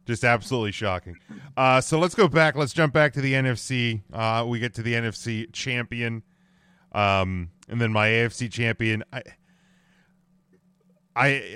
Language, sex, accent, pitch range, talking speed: English, male, American, 115-150 Hz, 150 wpm